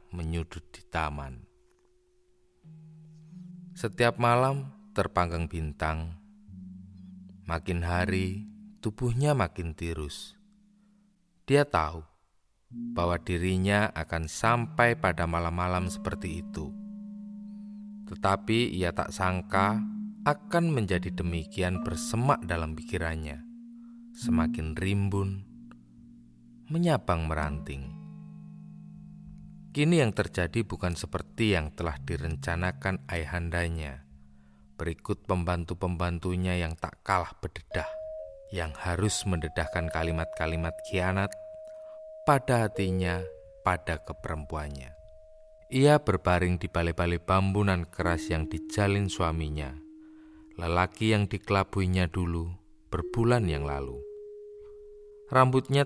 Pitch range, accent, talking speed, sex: 85-140 Hz, native, 85 wpm, male